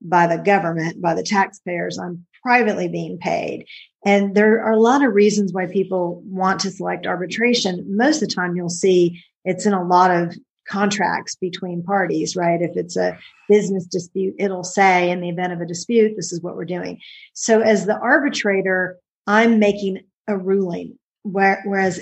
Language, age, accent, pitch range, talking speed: English, 40-59, American, 180-205 Hz, 175 wpm